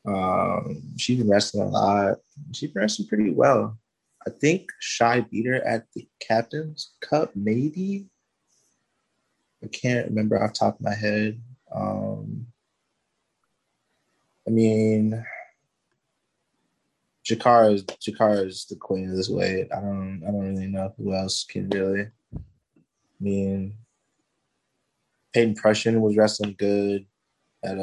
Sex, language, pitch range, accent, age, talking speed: male, English, 95-115 Hz, American, 20-39, 130 wpm